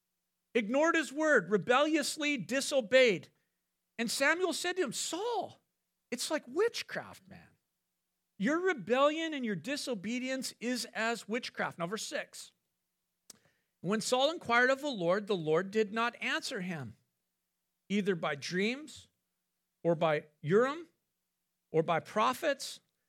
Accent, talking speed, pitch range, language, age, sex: American, 120 wpm, 175-250 Hz, English, 50-69, male